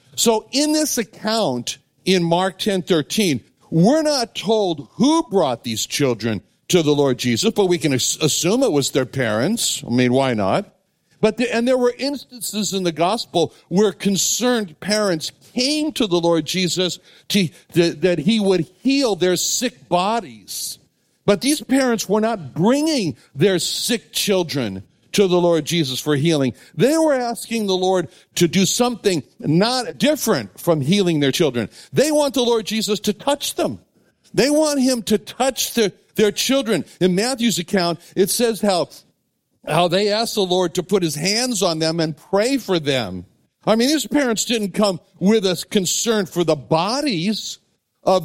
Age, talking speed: 60-79, 170 wpm